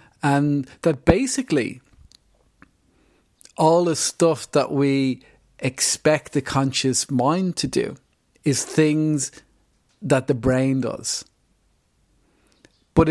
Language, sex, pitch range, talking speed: English, male, 130-155 Hz, 95 wpm